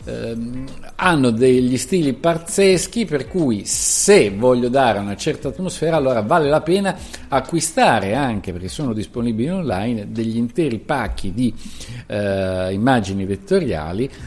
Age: 50-69